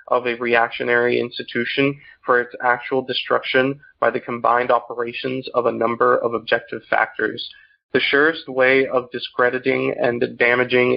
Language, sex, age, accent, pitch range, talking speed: English, male, 30-49, American, 120-130 Hz, 135 wpm